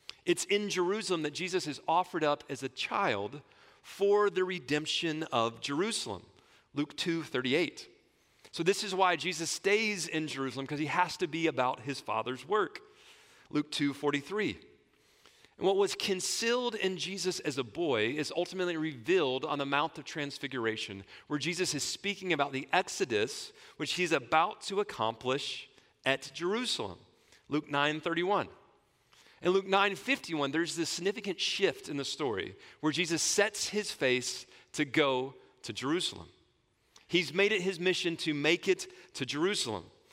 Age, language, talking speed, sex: 40-59, English, 155 wpm, male